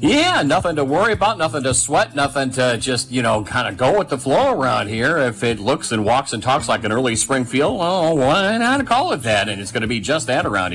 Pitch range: 105-130 Hz